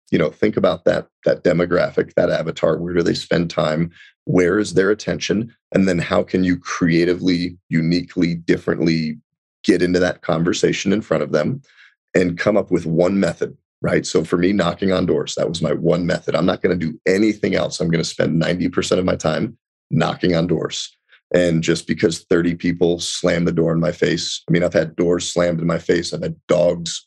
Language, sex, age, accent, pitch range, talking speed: English, male, 30-49, American, 85-90 Hz, 205 wpm